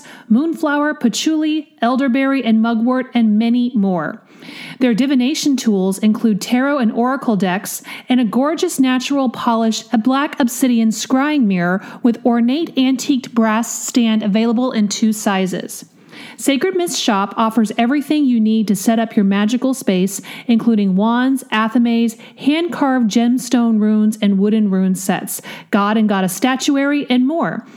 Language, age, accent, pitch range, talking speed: English, 40-59, American, 215-260 Hz, 135 wpm